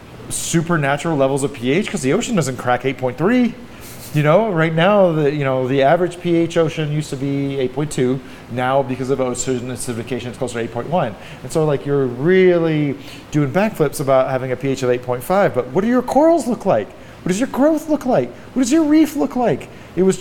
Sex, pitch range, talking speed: male, 125-160 Hz, 200 wpm